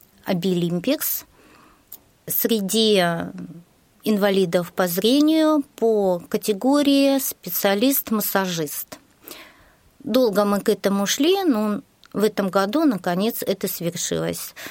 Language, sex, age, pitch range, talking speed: Russian, female, 30-49, 180-235 Hz, 80 wpm